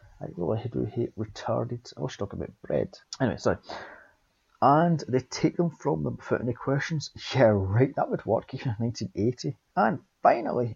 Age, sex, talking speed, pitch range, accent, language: 30-49, male, 175 wpm, 105-130 Hz, British, English